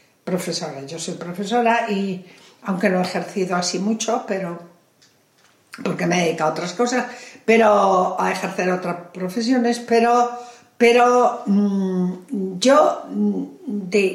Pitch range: 180-240 Hz